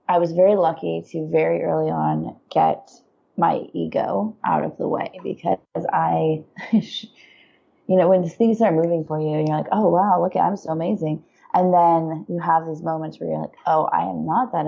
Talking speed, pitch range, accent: 195 wpm, 150-170 Hz, American